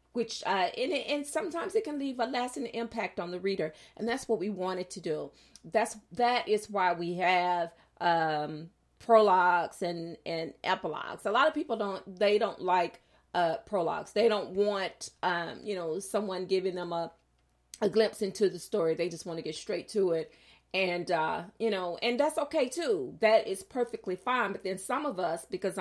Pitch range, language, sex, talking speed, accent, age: 175-225 Hz, English, female, 195 wpm, American, 40-59